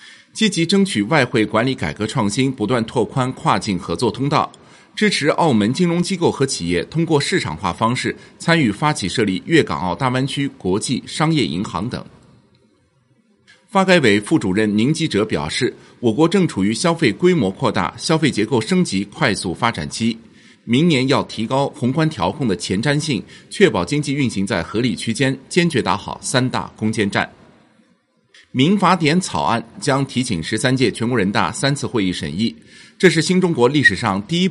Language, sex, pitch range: Chinese, male, 105-160 Hz